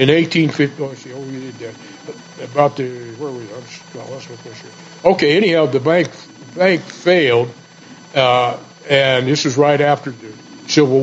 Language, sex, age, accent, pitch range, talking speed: English, male, 60-79, American, 130-155 Hz, 120 wpm